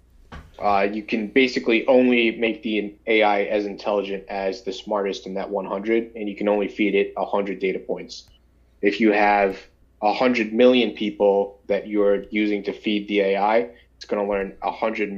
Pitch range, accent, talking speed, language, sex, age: 100-110 Hz, American, 165 wpm, English, male, 20-39